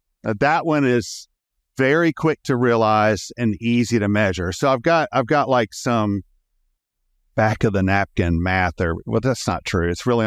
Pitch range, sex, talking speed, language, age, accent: 90-125 Hz, male, 175 wpm, English, 50-69, American